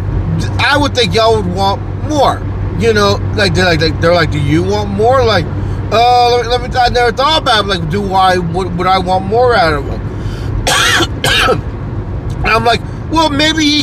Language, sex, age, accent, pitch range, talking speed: English, male, 30-49, American, 100-160 Hz, 190 wpm